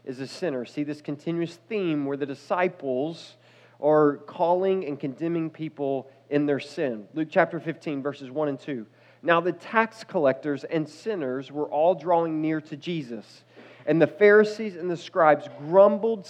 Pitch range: 145-175 Hz